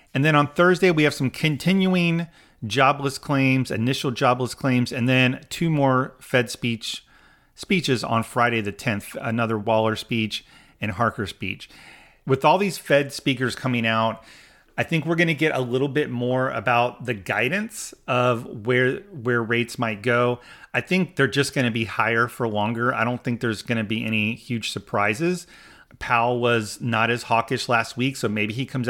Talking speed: 180 wpm